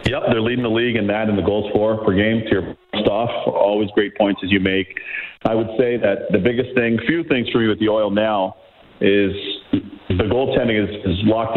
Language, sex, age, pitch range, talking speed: English, male, 40-59, 100-115 Hz, 225 wpm